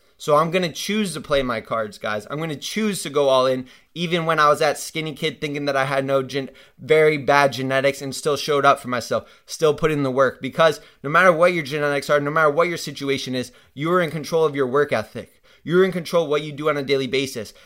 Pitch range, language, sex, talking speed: 135-160 Hz, English, male, 260 wpm